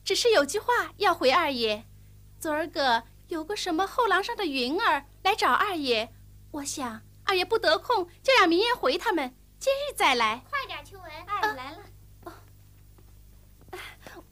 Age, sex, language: 30-49, female, Chinese